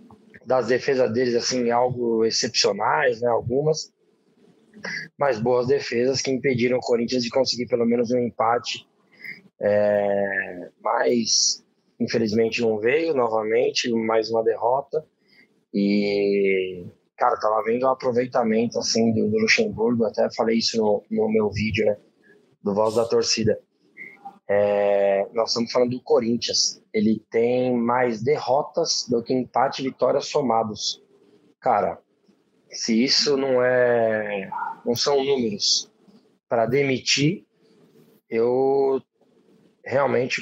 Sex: male